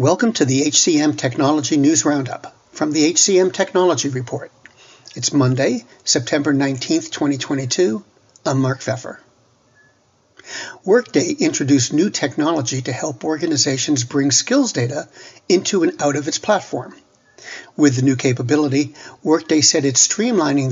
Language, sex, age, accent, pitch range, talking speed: English, male, 60-79, American, 135-165 Hz, 125 wpm